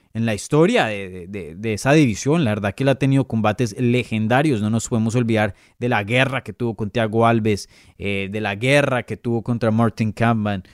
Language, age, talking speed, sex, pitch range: Spanish, 30-49, 205 wpm, male, 115-150 Hz